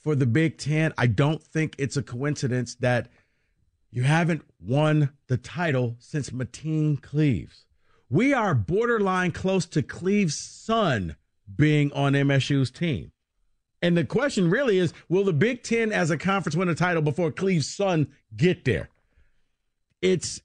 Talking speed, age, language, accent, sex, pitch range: 150 wpm, 50-69, English, American, male, 120-160 Hz